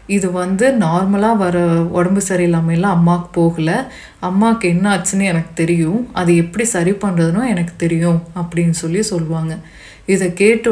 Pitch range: 170-215 Hz